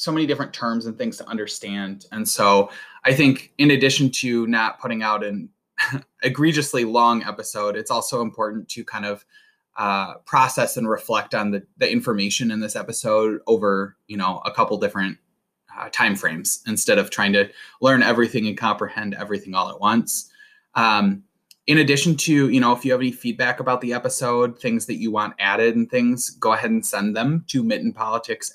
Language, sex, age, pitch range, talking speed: English, male, 20-39, 110-160 Hz, 185 wpm